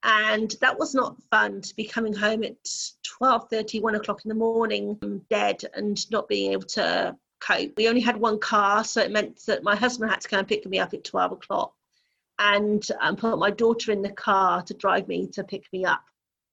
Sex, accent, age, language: female, British, 40-59, English